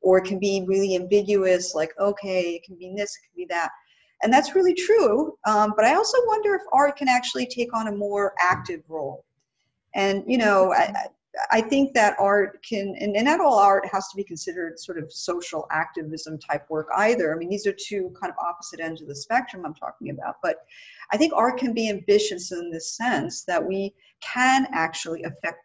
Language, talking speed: English, 210 wpm